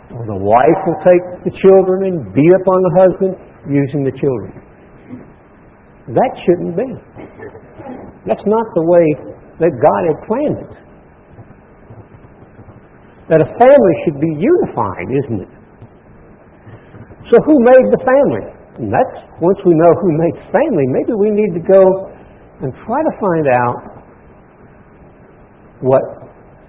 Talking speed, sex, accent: 135 wpm, male, American